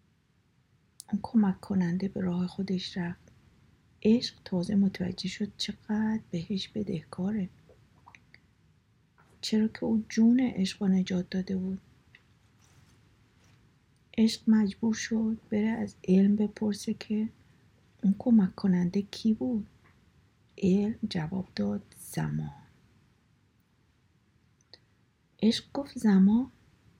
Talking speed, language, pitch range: 95 wpm, Persian, 175-215 Hz